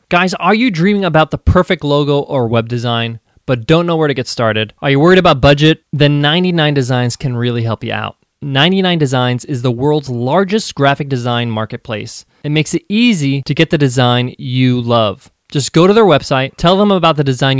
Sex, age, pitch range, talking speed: male, 20-39, 130-170 Hz, 200 wpm